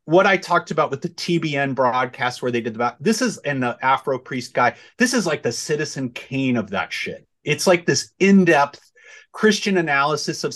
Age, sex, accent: 30-49, male, American